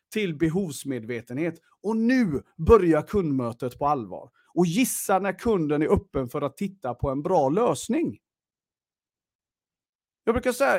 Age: 40-59